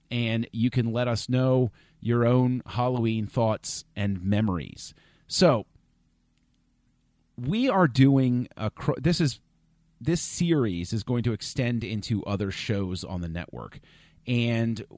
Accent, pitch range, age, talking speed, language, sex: American, 100-130 Hz, 40-59, 130 wpm, English, male